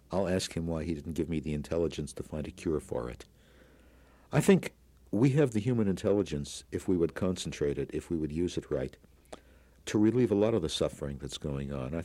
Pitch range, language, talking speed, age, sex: 70-90 Hz, English, 225 wpm, 60-79, male